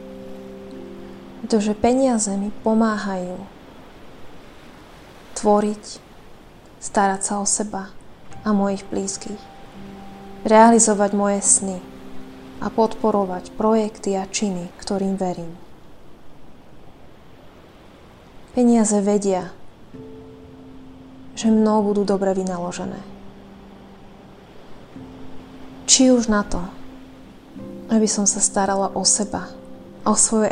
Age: 20-39